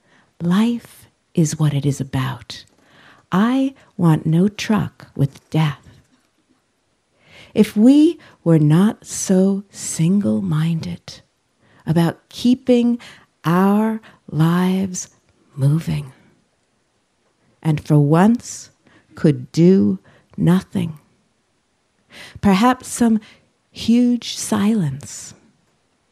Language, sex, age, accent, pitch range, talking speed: English, female, 50-69, American, 155-205 Hz, 75 wpm